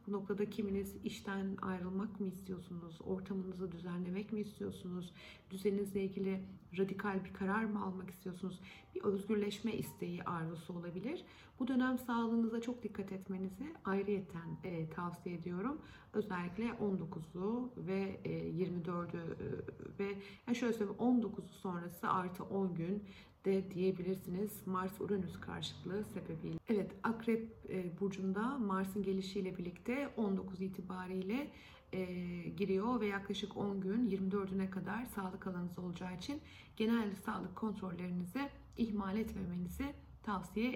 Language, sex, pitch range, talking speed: Turkish, female, 185-225 Hz, 120 wpm